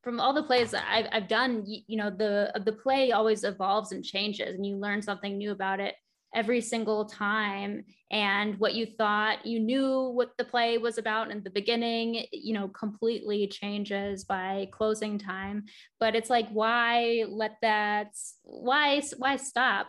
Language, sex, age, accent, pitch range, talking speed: English, female, 10-29, American, 200-230 Hz, 170 wpm